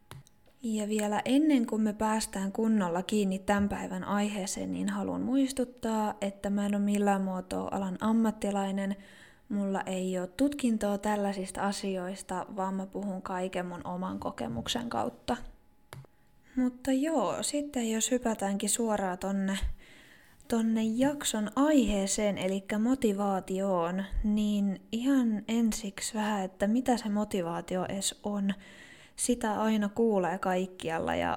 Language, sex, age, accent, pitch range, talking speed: Finnish, female, 20-39, native, 190-225 Hz, 120 wpm